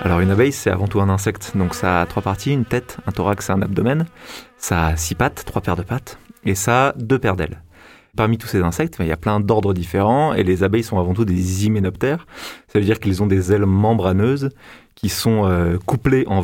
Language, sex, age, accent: French, male, 30-49, French